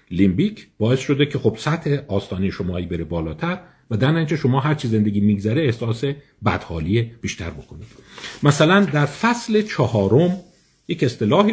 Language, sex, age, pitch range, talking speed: Persian, male, 50-69, 100-150 Hz, 140 wpm